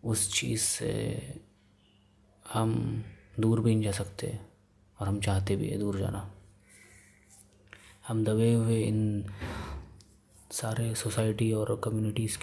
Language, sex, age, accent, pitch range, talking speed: Hindi, male, 20-39, native, 100-115 Hz, 115 wpm